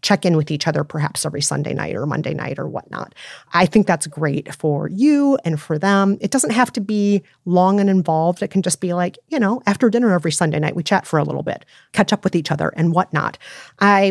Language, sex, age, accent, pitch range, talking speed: English, female, 30-49, American, 160-205 Hz, 245 wpm